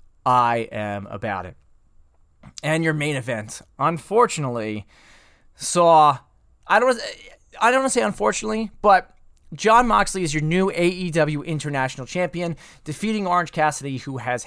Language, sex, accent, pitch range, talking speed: English, male, American, 125-175 Hz, 135 wpm